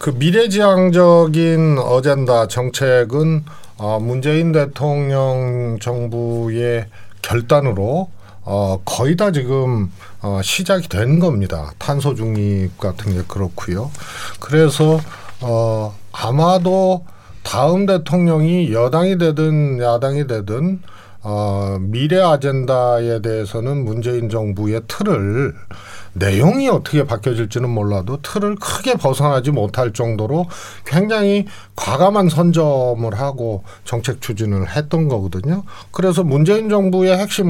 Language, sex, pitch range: Korean, male, 110-165 Hz